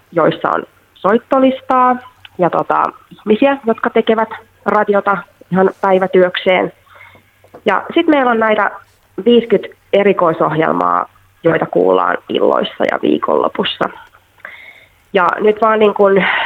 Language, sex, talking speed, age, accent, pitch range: Finnish, female, 100 wpm, 20-39, native, 170-220 Hz